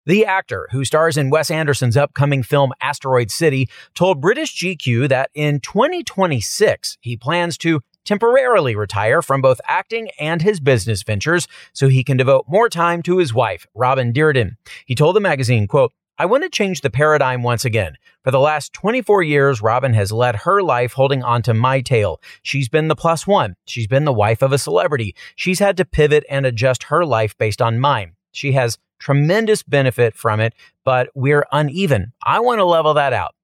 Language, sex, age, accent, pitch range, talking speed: English, male, 30-49, American, 120-160 Hz, 190 wpm